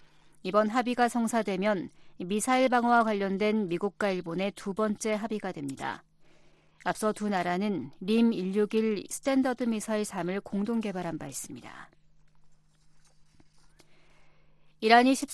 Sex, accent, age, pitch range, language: female, native, 40-59, 185-240 Hz, Korean